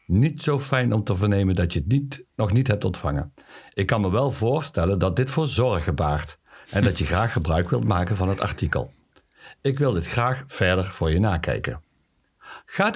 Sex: male